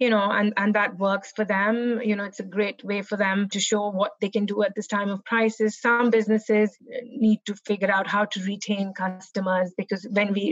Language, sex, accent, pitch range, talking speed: English, female, Indian, 195-220 Hz, 230 wpm